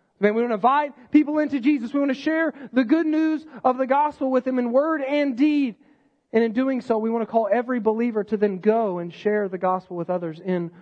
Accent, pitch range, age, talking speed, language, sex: American, 195-255 Hz, 40-59, 240 wpm, English, male